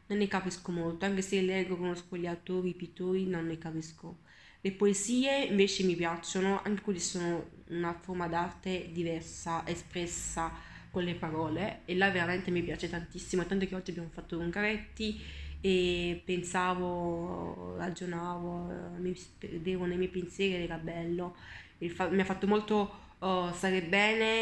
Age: 20-39